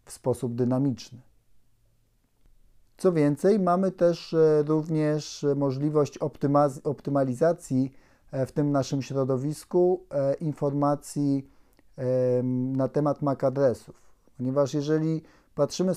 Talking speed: 85 wpm